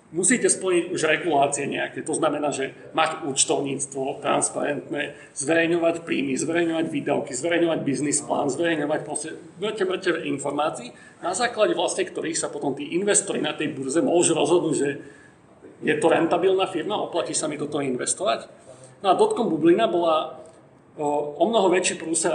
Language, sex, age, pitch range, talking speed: Slovak, male, 40-59, 155-190 Hz, 140 wpm